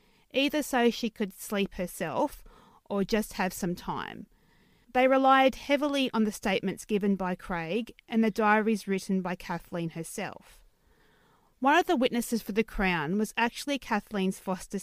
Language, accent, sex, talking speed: English, Australian, female, 155 wpm